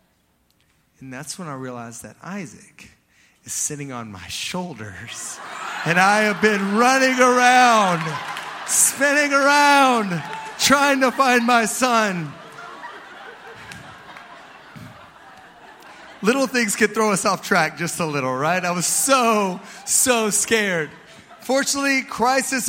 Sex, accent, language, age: male, American, English, 30-49